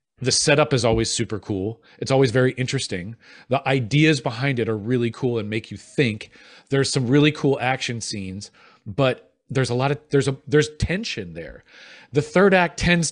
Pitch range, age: 115-150 Hz, 40-59